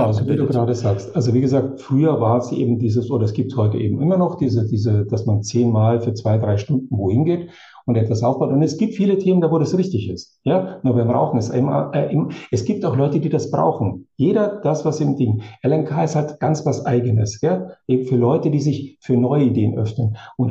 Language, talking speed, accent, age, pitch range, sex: German, 230 wpm, German, 50-69, 115-150 Hz, male